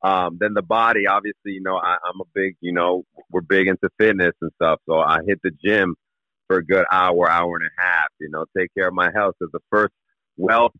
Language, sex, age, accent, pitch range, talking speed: English, male, 40-59, American, 95-115 Hz, 245 wpm